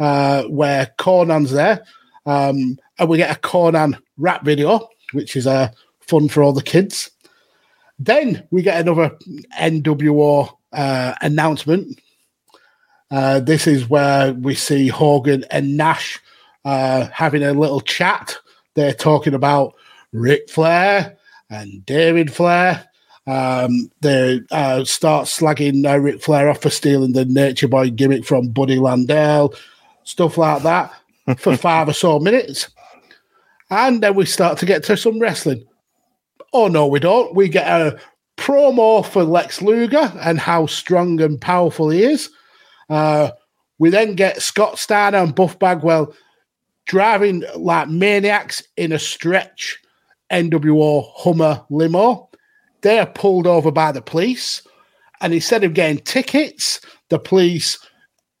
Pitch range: 140-185 Hz